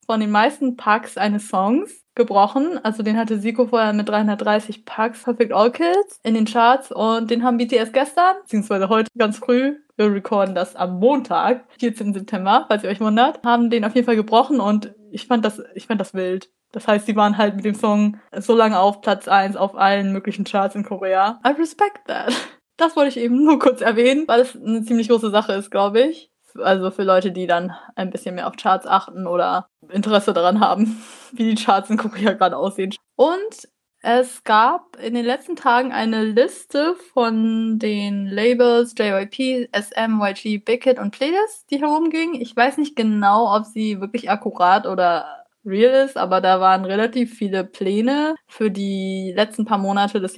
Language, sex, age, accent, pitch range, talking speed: German, female, 20-39, German, 200-250 Hz, 185 wpm